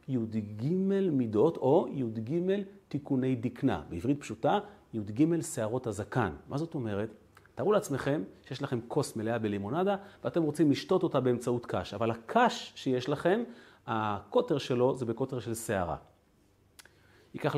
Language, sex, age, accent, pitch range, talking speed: Hebrew, male, 40-59, native, 105-150 Hz, 130 wpm